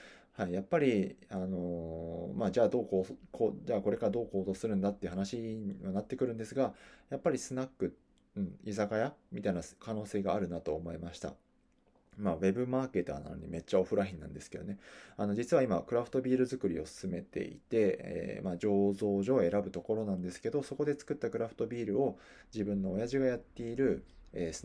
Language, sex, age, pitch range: Japanese, male, 20-39, 95-120 Hz